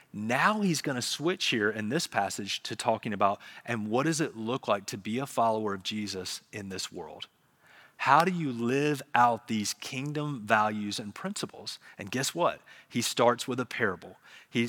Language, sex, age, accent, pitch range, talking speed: English, male, 30-49, American, 110-140 Hz, 185 wpm